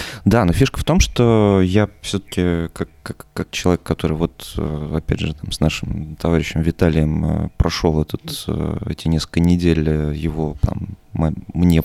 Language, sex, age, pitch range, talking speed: Russian, male, 20-39, 80-95 Hz, 145 wpm